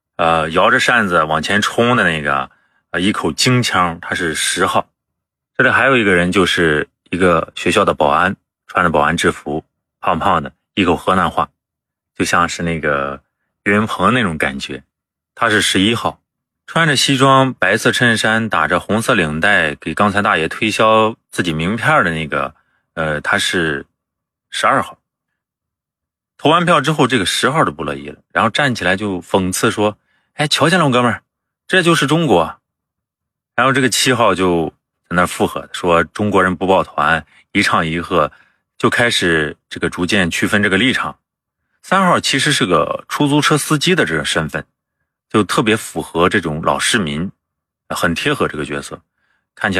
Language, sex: Chinese, male